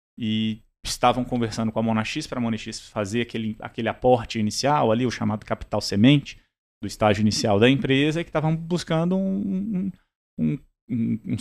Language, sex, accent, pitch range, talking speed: Portuguese, male, Brazilian, 110-135 Hz, 170 wpm